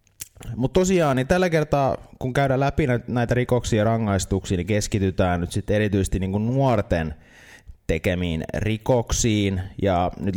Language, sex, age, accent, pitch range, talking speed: Finnish, male, 30-49, native, 90-110 Hz, 135 wpm